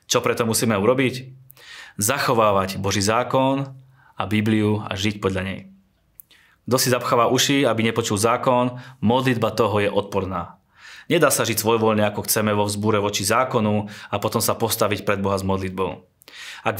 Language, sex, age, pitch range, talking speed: Slovak, male, 20-39, 100-125 Hz, 155 wpm